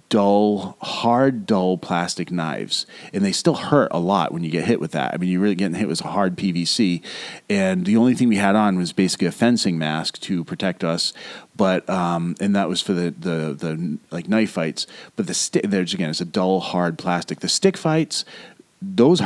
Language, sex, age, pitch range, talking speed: English, male, 30-49, 90-115 Hz, 210 wpm